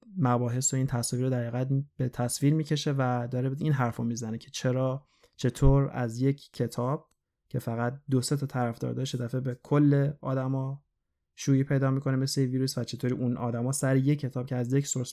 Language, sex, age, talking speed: Persian, male, 20-39, 185 wpm